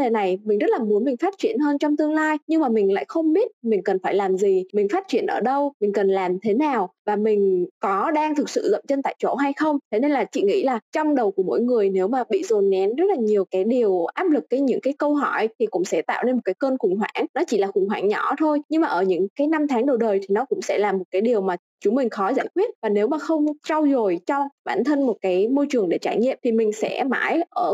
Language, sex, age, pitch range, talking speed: Vietnamese, female, 20-39, 210-315 Hz, 290 wpm